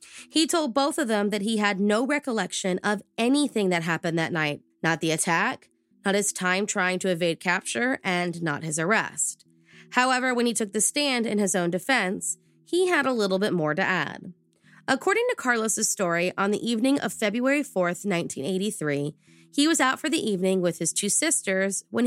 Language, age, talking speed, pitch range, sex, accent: English, 20-39, 190 wpm, 175-250 Hz, female, American